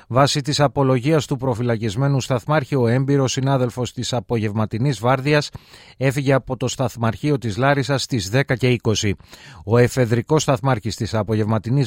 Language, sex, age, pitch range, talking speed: Greek, male, 30-49, 115-135 Hz, 135 wpm